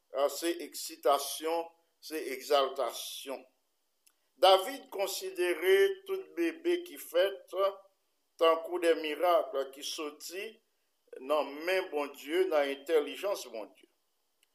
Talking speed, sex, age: 105 wpm, male, 50-69